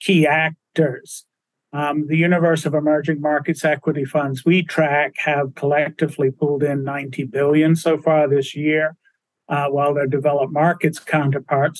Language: English